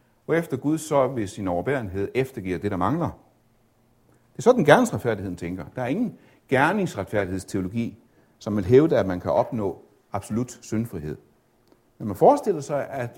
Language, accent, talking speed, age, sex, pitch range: Danish, native, 155 wpm, 60-79, male, 95-135 Hz